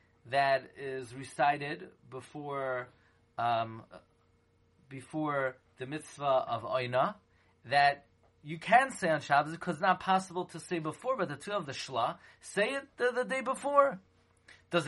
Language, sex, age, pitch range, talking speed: English, male, 30-49, 135-180 Hz, 145 wpm